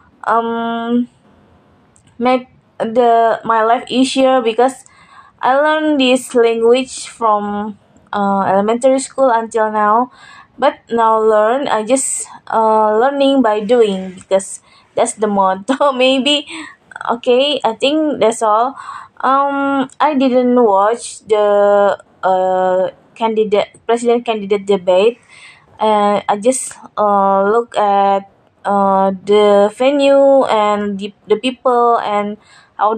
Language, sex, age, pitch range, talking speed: English, female, 20-39, 210-265 Hz, 115 wpm